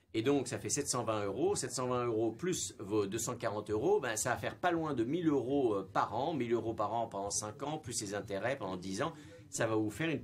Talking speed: 245 wpm